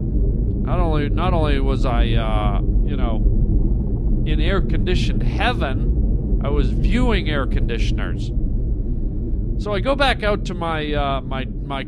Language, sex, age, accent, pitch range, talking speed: English, male, 40-59, American, 140-195 Hz, 120 wpm